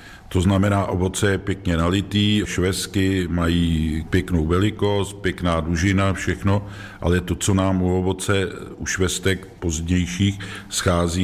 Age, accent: 50-69, native